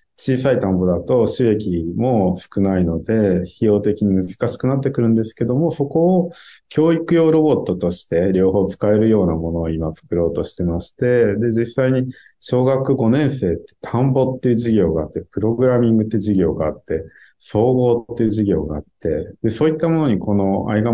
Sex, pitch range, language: male, 90-125 Hz, Japanese